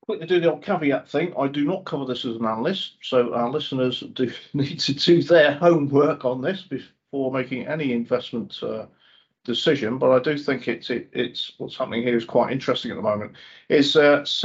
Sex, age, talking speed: male, 40-59, 195 wpm